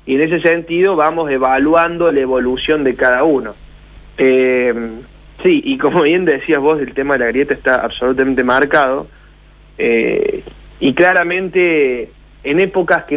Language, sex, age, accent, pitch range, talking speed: Spanish, male, 30-49, Argentinian, 135-190 Hz, 145 wpm